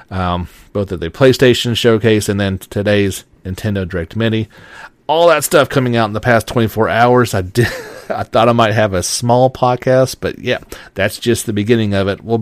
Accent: American